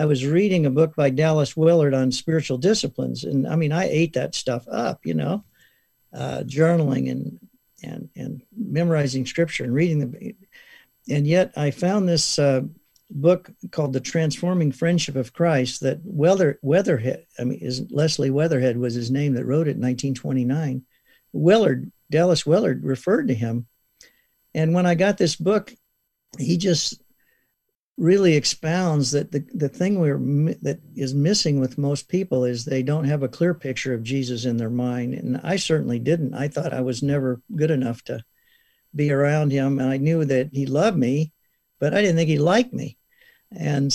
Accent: American